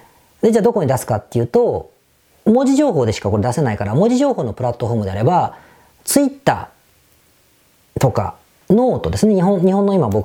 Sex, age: female, 40-59